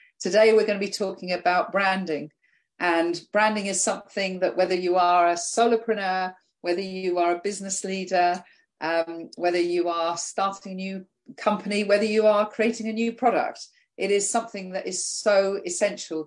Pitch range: 165-195 Hz